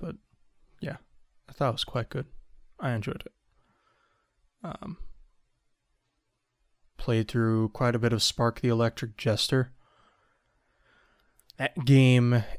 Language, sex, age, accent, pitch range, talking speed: English, male, 20-39, American, 105-125 Hz, 115 wpm